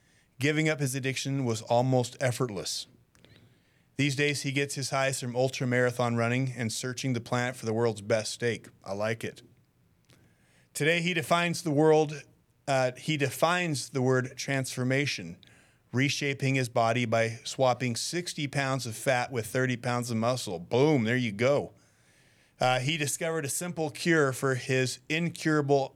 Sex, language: male, English